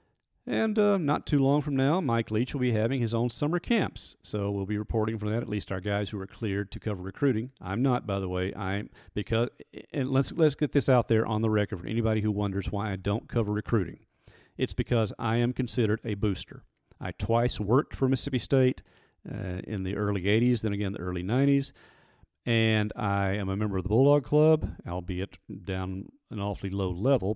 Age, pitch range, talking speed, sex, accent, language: 40-59, 100-125 Hz, 210 wpm, male, American, English